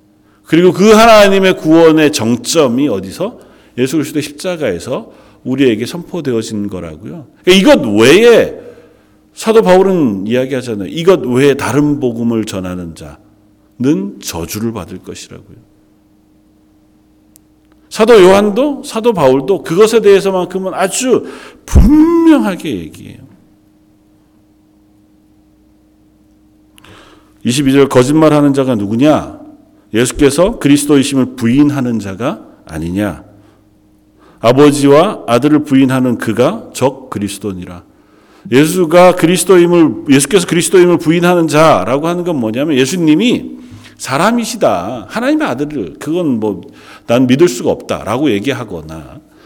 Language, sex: Korean, male